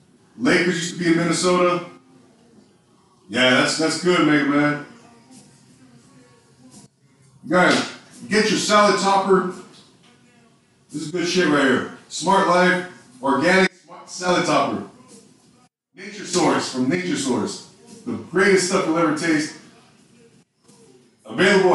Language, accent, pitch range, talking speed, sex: English, American, 170-205 Hz, 115 wpm, male